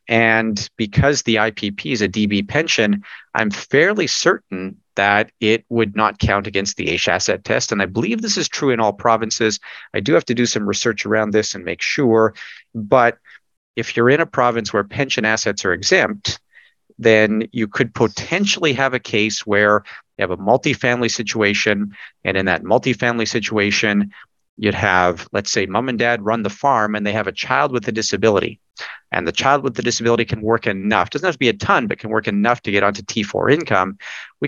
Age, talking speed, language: 40-59, 200 wpm, English